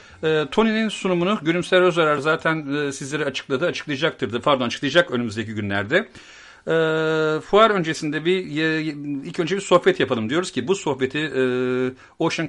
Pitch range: 120-160 Hz